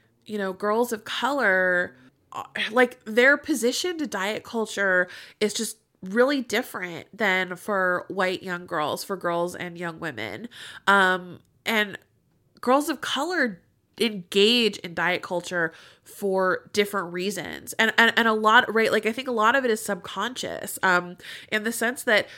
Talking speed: 155 wpm